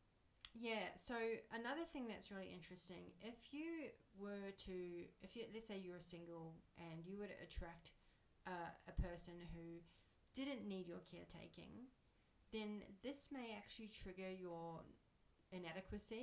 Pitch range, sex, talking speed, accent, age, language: 175-220 Hz, female, 135 wpm, Australian, 40-59, English